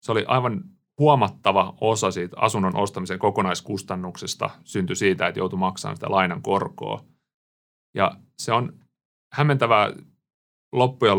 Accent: native